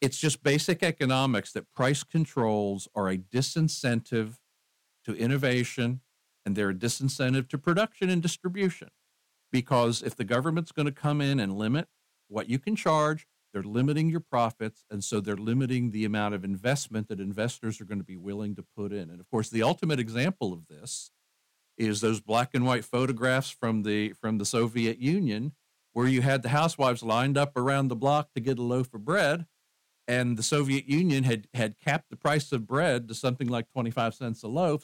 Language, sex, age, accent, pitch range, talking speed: English, male, 50-69, American, 110-145 Hz, 190 wpm